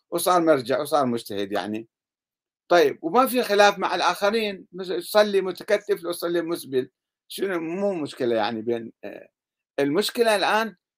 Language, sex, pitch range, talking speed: Arabic, male, 155-205 Hz, 125 wpm